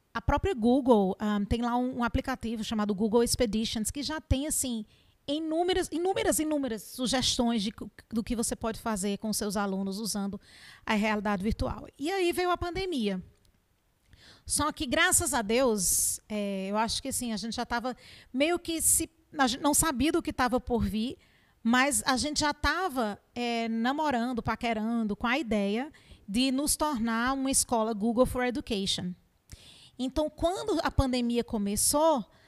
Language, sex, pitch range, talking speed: Portuguese, female, 220-290 Hz, 160 wpm